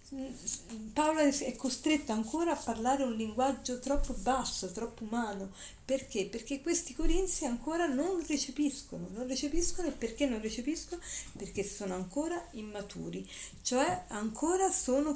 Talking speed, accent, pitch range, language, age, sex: 125 wpm, native, 200-285 Hz, Italian, 40-59, female